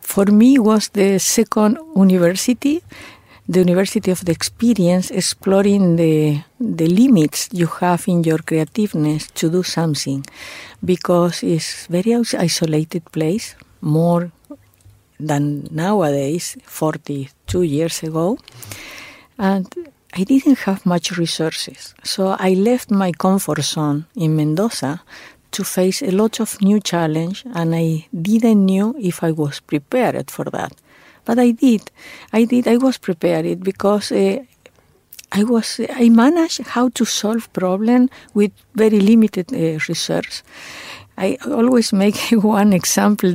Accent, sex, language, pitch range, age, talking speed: Spanish, female, English, 170-225 Hz, 50-69, 130 wpm